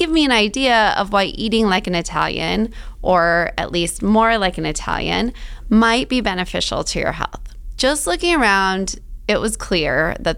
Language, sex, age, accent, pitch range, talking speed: English, female, 20-39, American, 180-245 Hz, 175 wpm